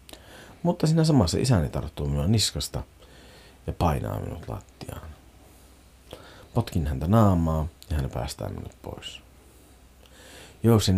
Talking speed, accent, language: 110 wpm, native, Finnish